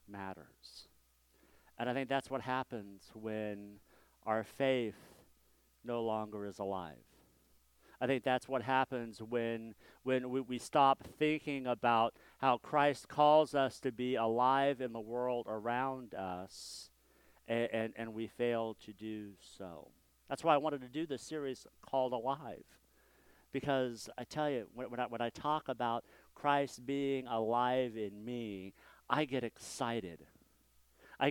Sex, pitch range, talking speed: male, 110-135 Hz, 145 wpm